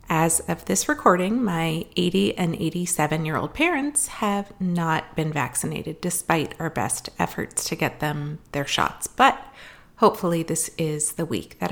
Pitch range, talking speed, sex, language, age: 160-210 Hz, 150 wpm, female, English, 30-49